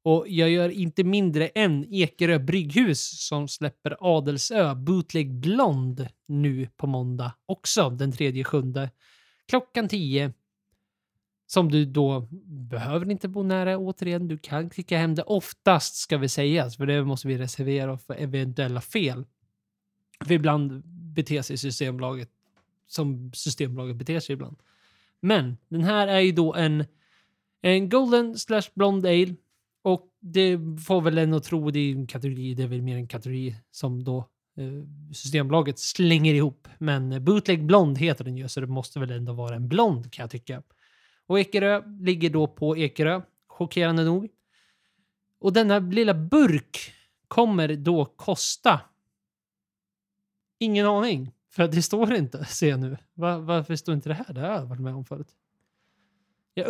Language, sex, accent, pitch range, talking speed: Swedish, male, native, 135-185 Hz, 145 wpm